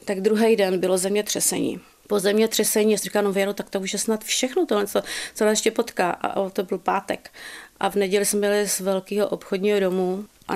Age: 30-49